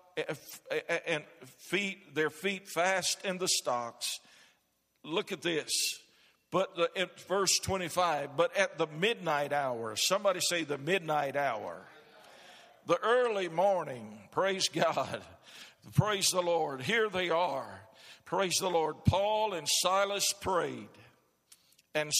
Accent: American